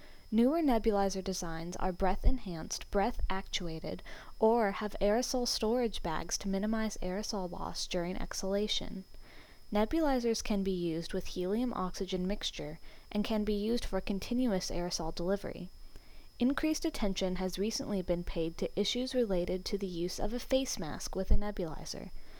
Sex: female